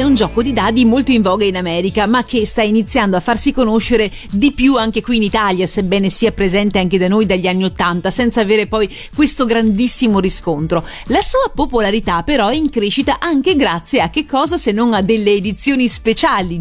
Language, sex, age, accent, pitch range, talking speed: Italian, female, 30-49, native, 205-250 Hz, 200 wpm